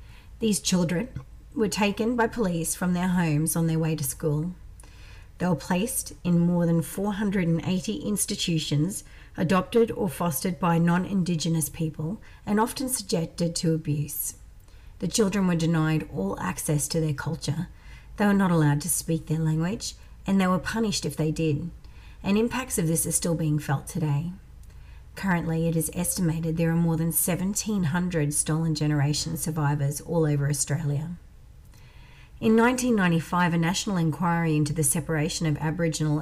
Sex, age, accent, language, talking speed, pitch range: female, 40-59, Australian, English, 150 wpm, 150-180 Hz